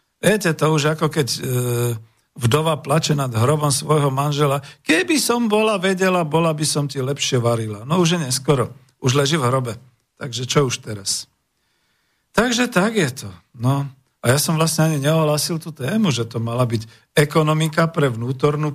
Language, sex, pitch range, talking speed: Slovak, male, 120-150 Hz, 170 wpm